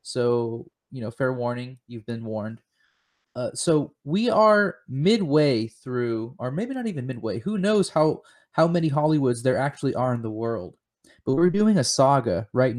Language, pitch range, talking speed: English, 120-160 Hz, 175 wpm